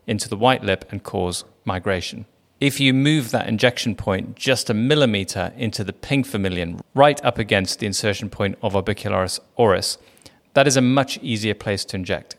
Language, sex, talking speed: English, male, 180 wpm